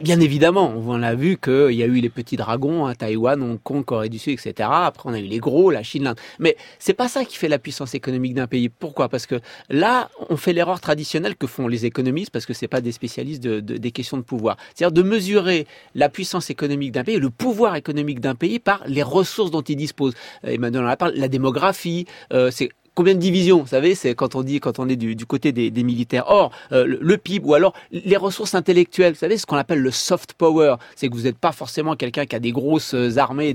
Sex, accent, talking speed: male, French, 250 wpm